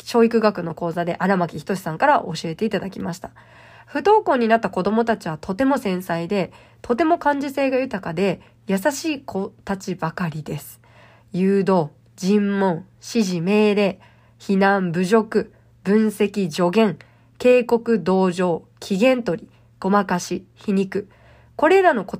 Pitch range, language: 175-240 Hz, Japanese